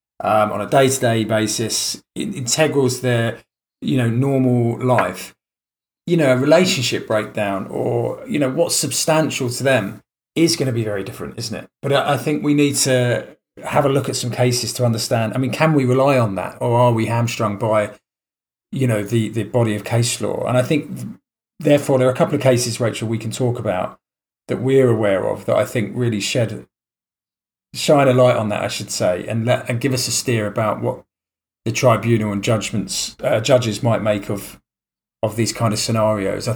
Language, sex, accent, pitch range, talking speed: English, male, British, 110-130 Hz, 200 wpm